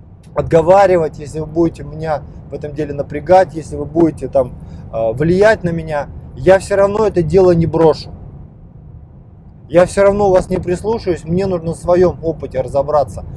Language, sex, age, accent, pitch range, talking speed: Russian, male, 20-39, native, 140-180 Hz, 155 wpm